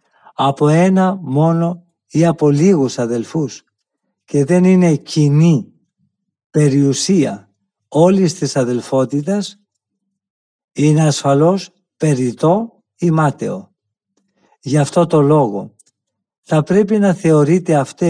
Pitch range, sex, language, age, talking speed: 140-180 Hz, male, Greek, 60-79, 95 wpm